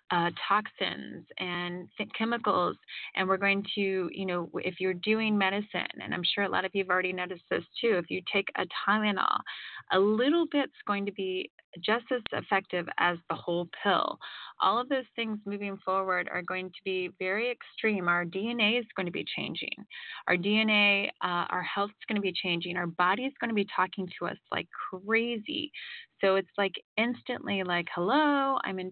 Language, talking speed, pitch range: English, 190 wpm, 185-225 Hz